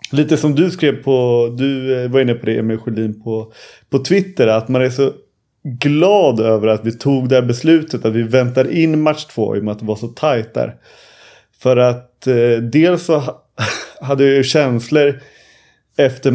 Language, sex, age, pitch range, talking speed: Swedish, male, 30-49, 115-140 Hz, 185 wpm